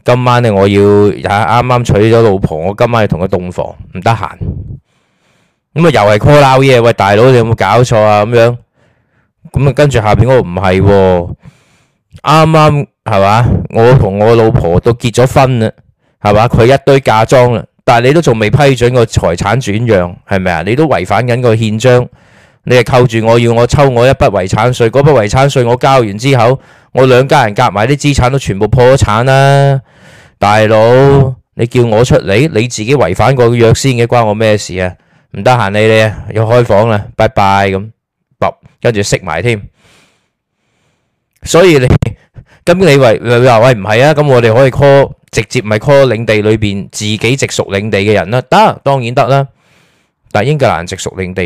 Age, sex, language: 20-39, male, Chinese